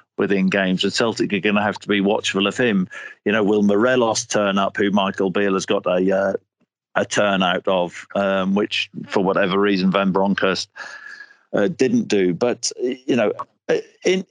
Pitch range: 100-120 Hz